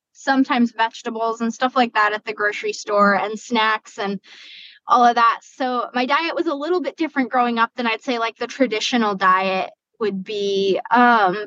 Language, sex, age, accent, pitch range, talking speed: English, female, 10-29, American, 215-250 Hz, 190 wpm